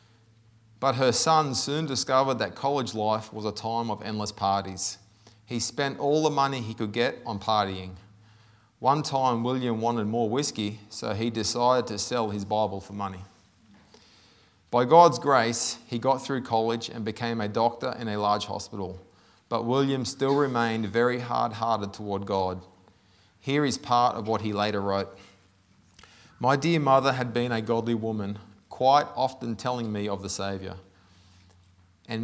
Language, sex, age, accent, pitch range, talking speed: English, male, 30-49, Australian, 100-120 Hz, 160 wpm